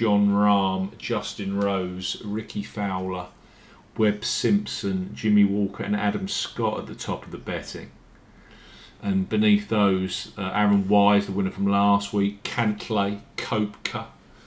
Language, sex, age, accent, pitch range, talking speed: English, male, 40-59, British, 100-115 Hz, 135 wpm